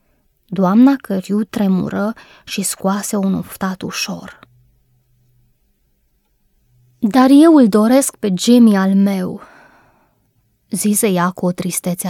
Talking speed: 105 wpm